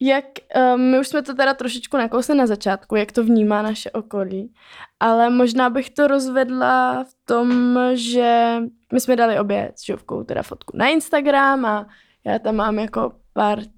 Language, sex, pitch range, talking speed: Czech, female, 220-265 Hz, 170 wpm